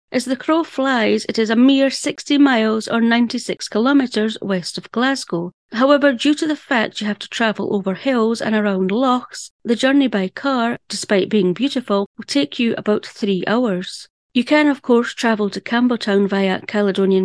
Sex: female